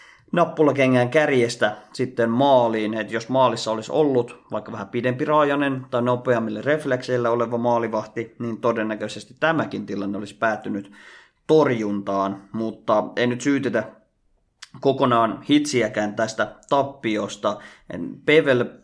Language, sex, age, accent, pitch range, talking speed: Finnish, male, 30-49, native, 110-150 Hz, 110 wpm